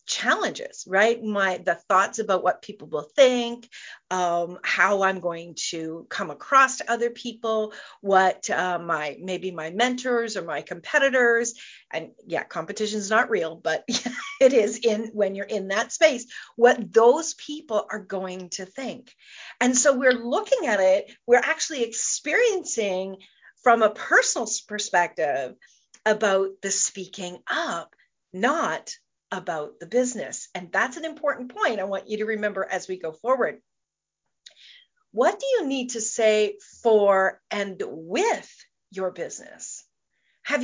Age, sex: 40-59, female